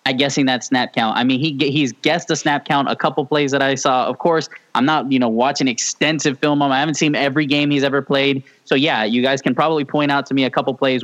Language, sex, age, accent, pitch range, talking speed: English, male, 10-29, American, 120-150 Hz, 275 wpm